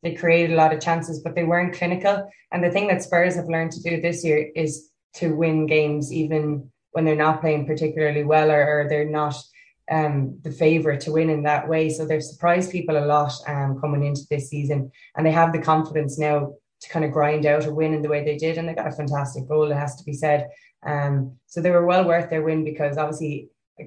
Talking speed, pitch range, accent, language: 240 wpm, 145-155 Hz, Irish, English